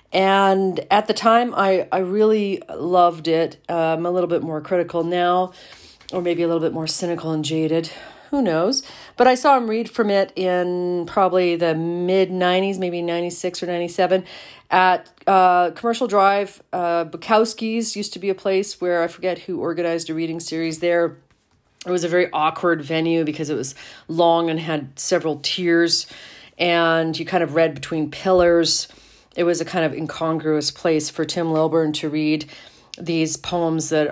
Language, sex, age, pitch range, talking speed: English, female, 40-59, 155-180 Hz, 175 wpm